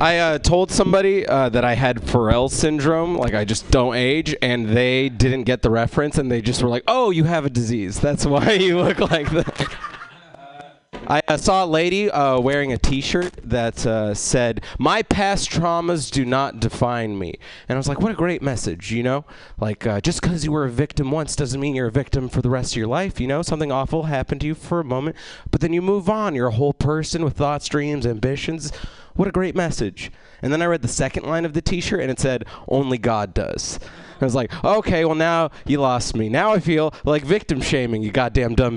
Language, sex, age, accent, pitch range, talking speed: English, male, 30-49, American, 125-170 Hz, 225 wpm